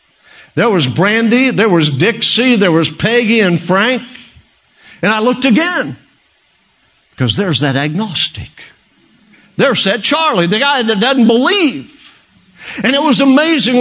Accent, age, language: American, 50-69, English